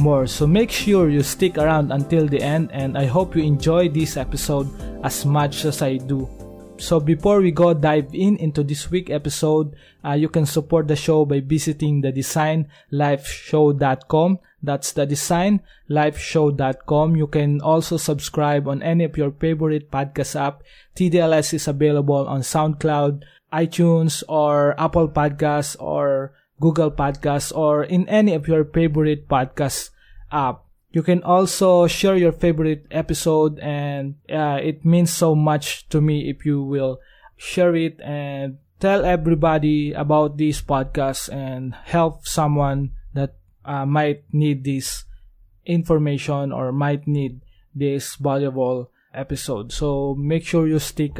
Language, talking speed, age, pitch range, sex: English, 145 wpm, 20-39, 140-160 Hz, male